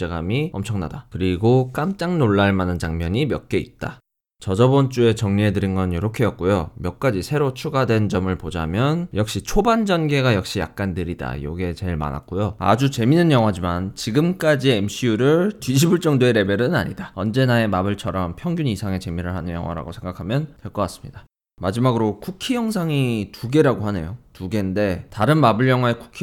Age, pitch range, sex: 20-39, 95-140 Hz, male